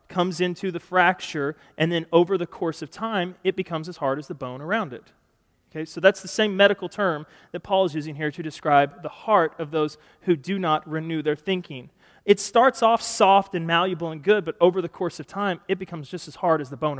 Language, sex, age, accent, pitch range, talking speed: English, male, 30-49, American, 160-210 Hz, 235 wpm